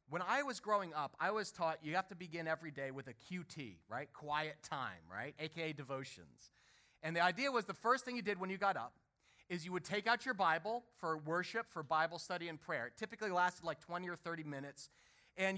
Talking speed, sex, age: 225 wpm, male, 30-49